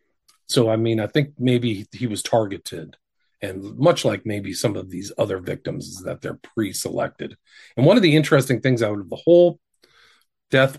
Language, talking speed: English, 190 wpm